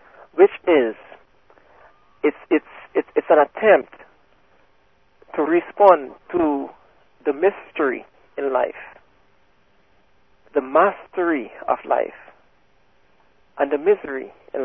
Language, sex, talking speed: English, male, 90 wpm